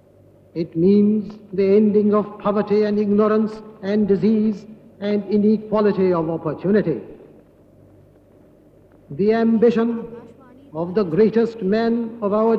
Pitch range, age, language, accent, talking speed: 195-220 Hz, 60-79, Hindi, native, 105 wpm